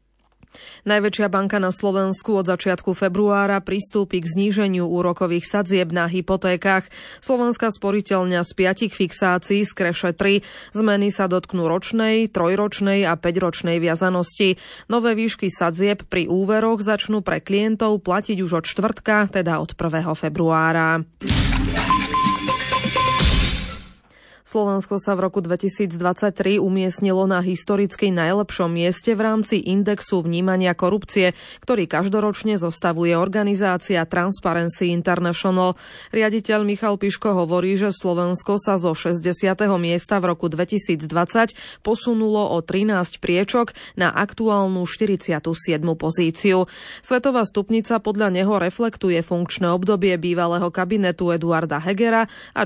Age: 20-39